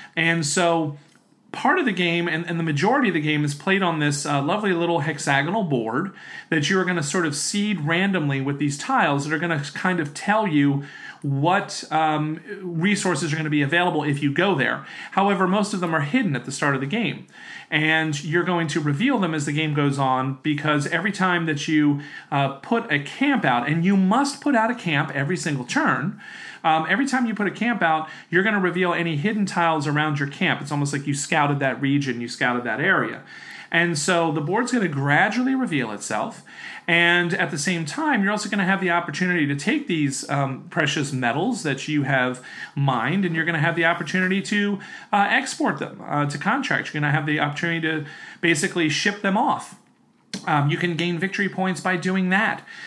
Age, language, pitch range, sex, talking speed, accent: 40-59, English, 150-195 Hz, male, 215 wpm, American